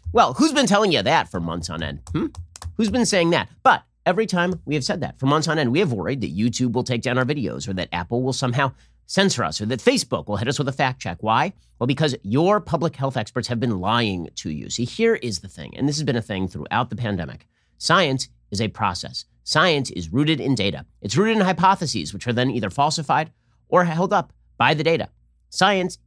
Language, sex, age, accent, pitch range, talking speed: English, male, 30-49, American, 110-170 Hz, 240 wpm